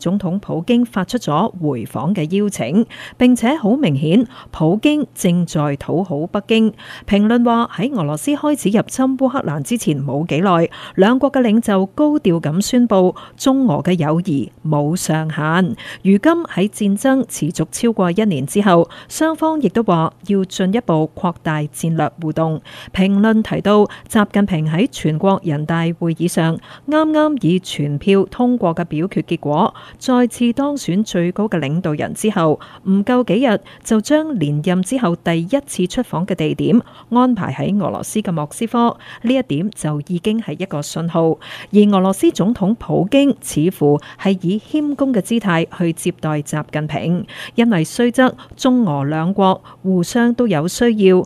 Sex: female